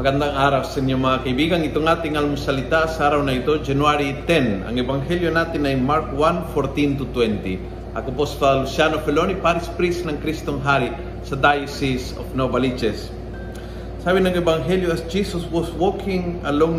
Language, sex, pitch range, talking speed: Filipino, male, 135-170 Hz, 160 wpm